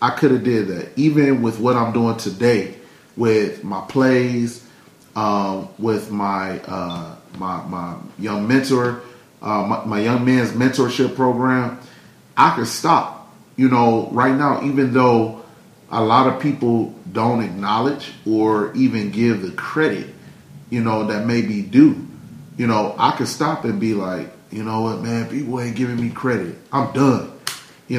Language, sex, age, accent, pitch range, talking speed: English, male, 30-49, American, 105-130 Hz, 160 wpm